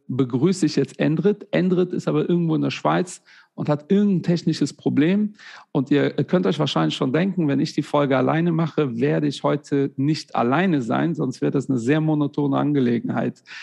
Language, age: German, 40-59